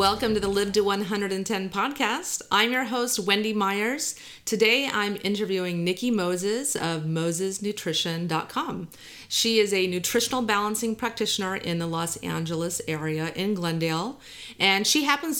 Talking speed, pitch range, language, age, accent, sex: 135 wpm, 175-220 Hz, English, 30-49, American, female